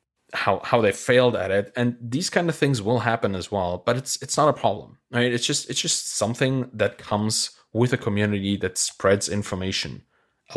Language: English